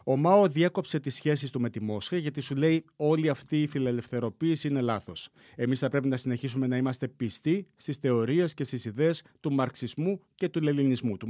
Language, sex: Greek, male